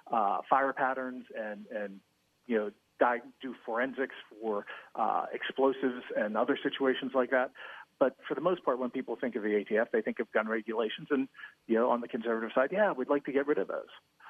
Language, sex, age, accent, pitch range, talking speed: English, male, 40-59, American, 125-155 Hz, 205 wpm